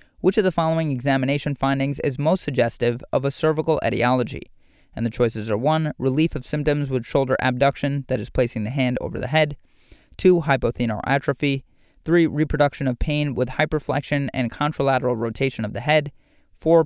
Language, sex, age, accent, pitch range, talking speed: English, male, 30-49, American, 125-155 Hz, 170 wpm